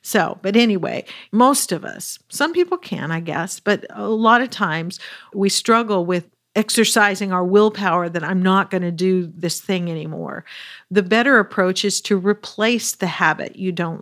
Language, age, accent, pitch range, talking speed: English, 50-69, American, 180-215 Hz, 175 wpm